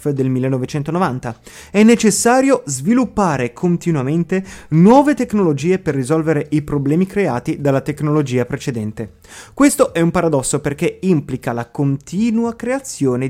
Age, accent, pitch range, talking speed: 30-49, native, 130-190 Hz, 115 wpm